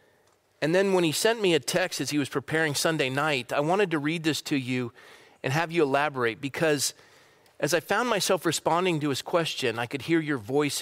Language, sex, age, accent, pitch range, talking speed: English, male, 40-59, American, 140-180 Hz, 215 wpm